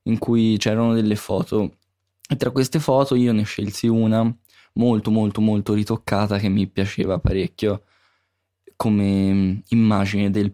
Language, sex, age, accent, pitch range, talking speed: English, male, 20-39, Italian, 95-115 Hz, 135 wpm